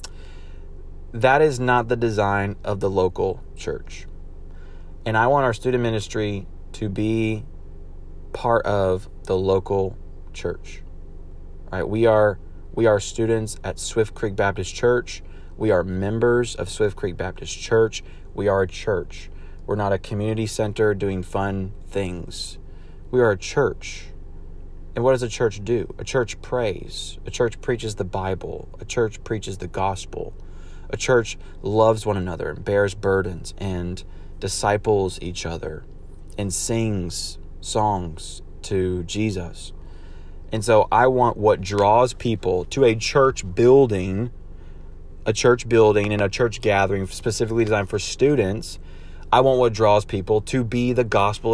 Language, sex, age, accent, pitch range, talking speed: English, male, 30-49, American, 85-110 Hz, 145 wpm